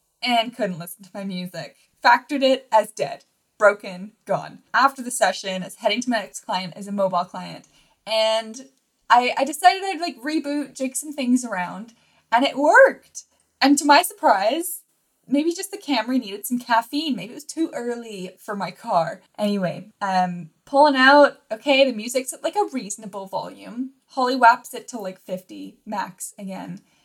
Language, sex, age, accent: English, female, 10-29, American